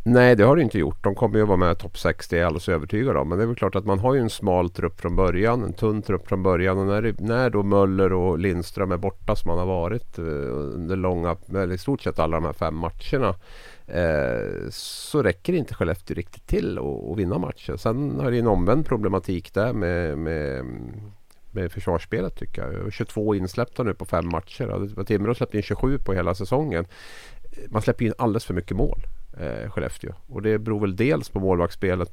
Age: 50-69